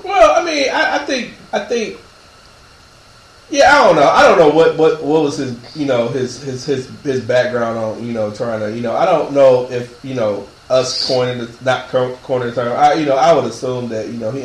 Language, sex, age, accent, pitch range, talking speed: English, male, 20-39, American, 110-125 Hz, 230 wpm